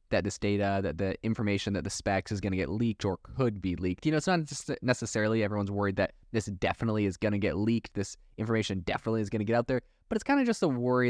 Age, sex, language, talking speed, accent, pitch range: 20-39, male, English, 265 wpm, American, 100-115 Hz